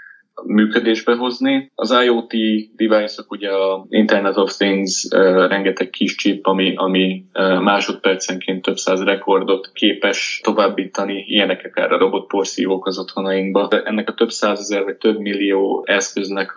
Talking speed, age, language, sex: 140 wpm, 20-39, Hungarian, male